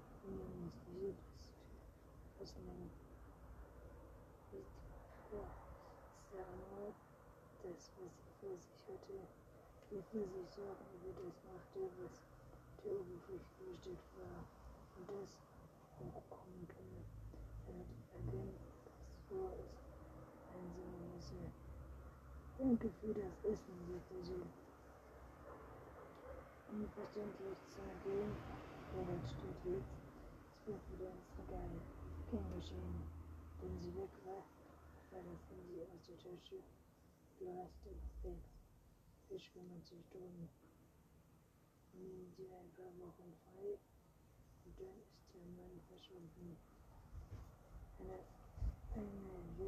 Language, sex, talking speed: German, female, 70 wpm